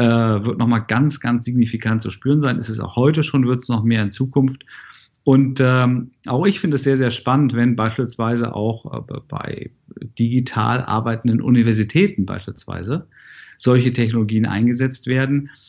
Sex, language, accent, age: male, German, German, 50-69